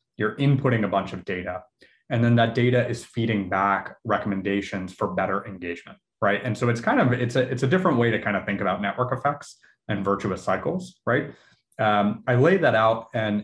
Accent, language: American, English